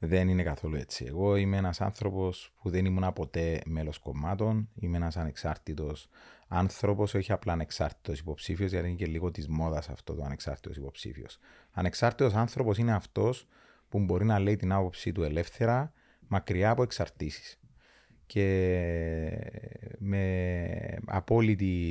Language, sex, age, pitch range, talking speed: Greek, male, 30-49, 85-110 Hz, 135 wpm